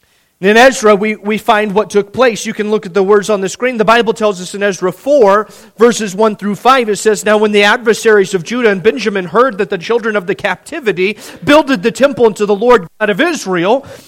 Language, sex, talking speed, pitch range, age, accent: English, male, 230 wpm, 205-270 Hz, 40-59, American